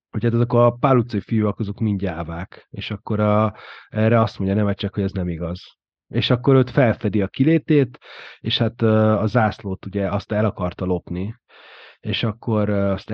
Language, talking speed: Hungarian, 180 wpm